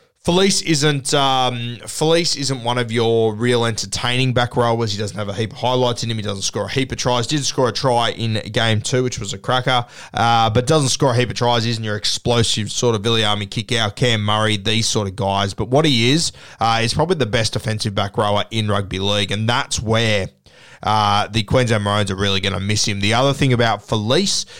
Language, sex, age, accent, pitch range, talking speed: English, male, 20-39, Australian, 110-130 Hz, 230 wpm